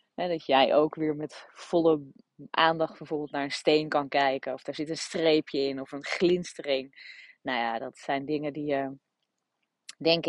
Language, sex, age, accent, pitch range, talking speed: Dutch, female, 20-39, Dutch, 140-185 Hz, 180 wpm